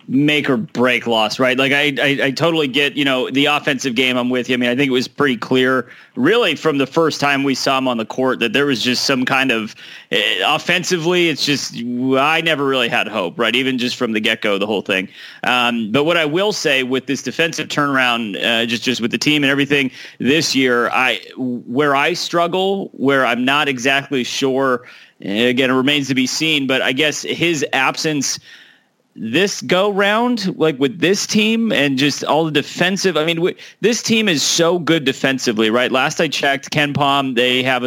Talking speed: 210 wpm